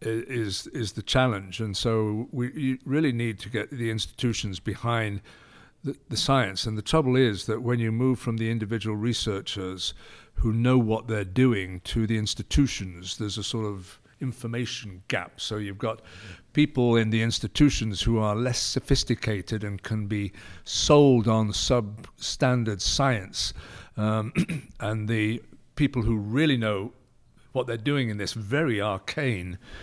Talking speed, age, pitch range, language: 155 wpm, 60-79, 105-125 Hz, English